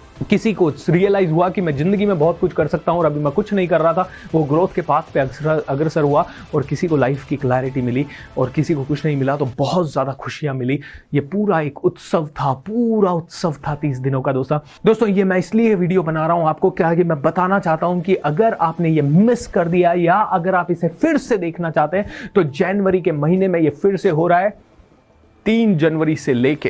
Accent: native